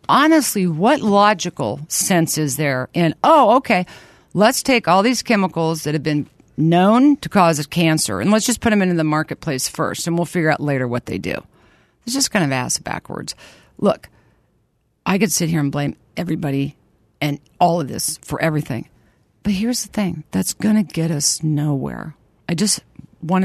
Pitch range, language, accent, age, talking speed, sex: 155-240 Hz, English, American, 50-69, 180 wpm, female